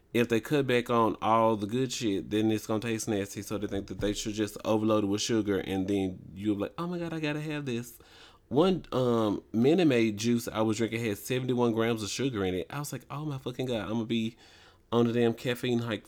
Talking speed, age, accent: 260 wpm, 30-49, American